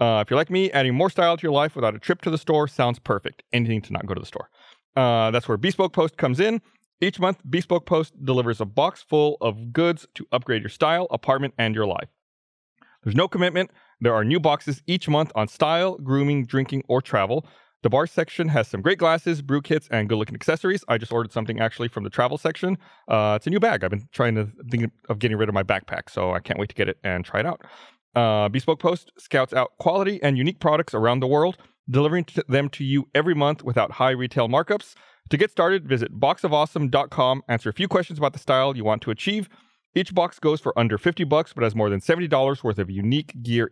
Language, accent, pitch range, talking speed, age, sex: English, American, 120-170 Hz, 230 wpm, 30-49, male